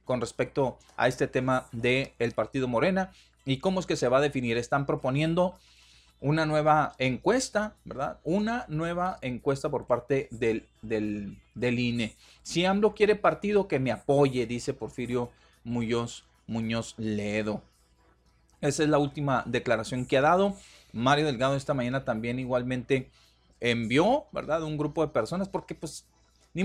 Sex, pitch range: male, 115-155 Hz